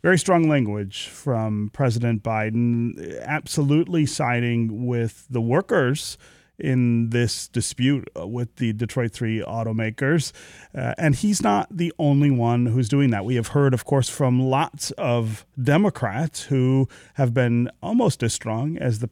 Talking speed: 145 wpm